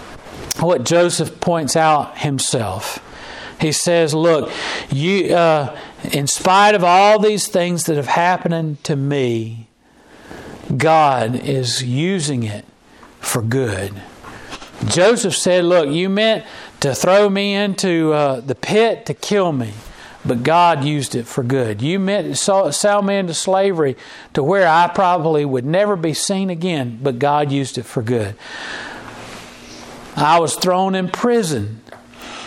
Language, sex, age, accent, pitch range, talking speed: English, male, 50-69, American, 130-175 Hz, 140 wpm